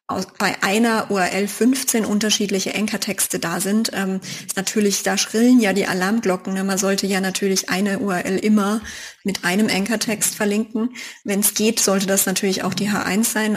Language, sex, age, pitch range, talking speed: German, female, 20-39, 190-220 Hz, 170 wpm